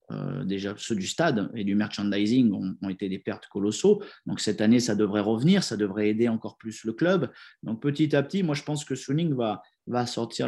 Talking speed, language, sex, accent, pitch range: 225 wpm, French, male, French, 110-140 Hz